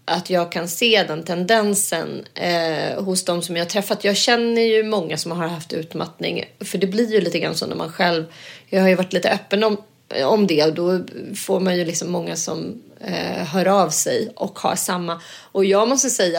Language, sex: Swedish, female